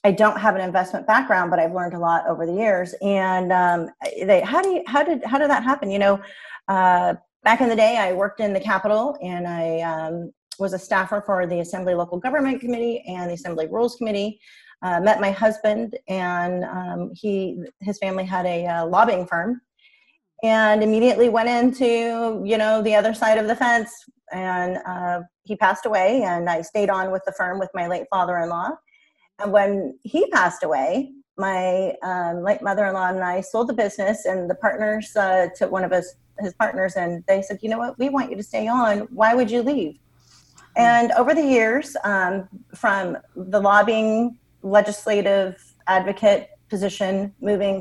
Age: 30-49